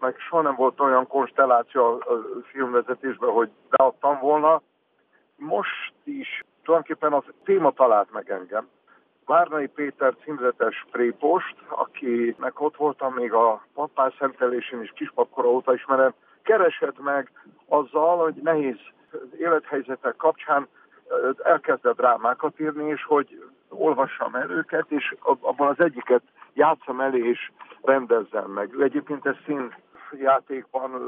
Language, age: Hungarian, 60-79